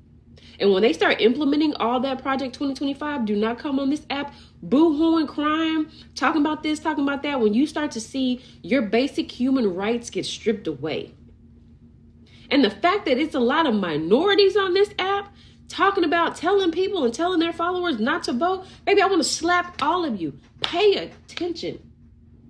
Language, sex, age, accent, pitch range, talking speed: English, female, 30-49, American, 225-330 Hz, 180 wpm